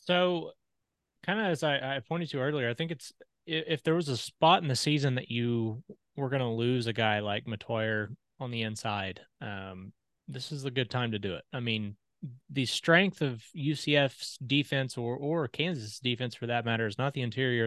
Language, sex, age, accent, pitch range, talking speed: English, male, 20-39, American, 110-140 Hz, 205 wpm